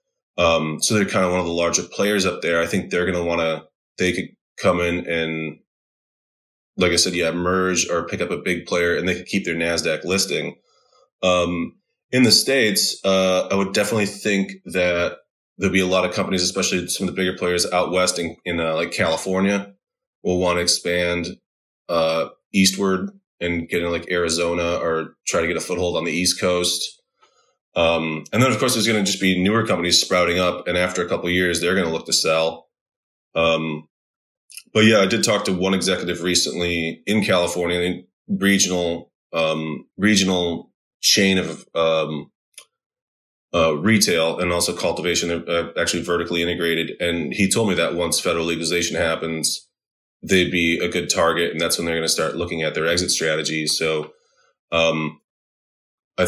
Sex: male